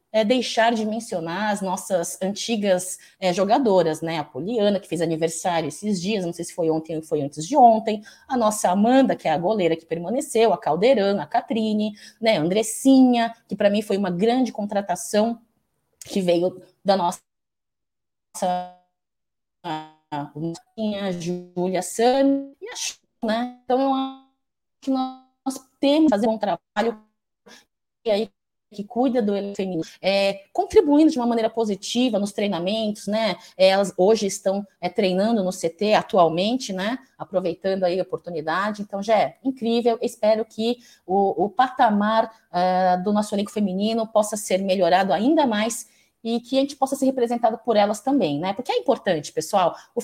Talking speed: 155 wpm